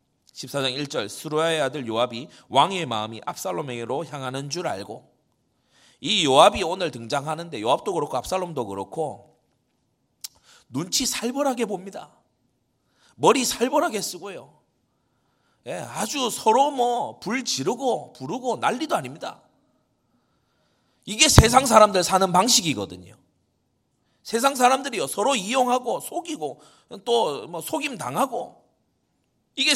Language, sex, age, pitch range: Korean, male, 30-49, 140-230 Hz